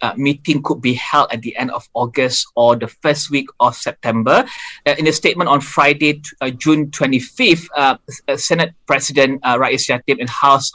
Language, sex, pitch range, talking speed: English, male, 130-155 Hz, 190 wpm